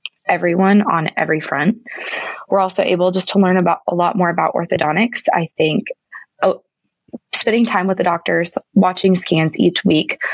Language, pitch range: English, 170-210 Hz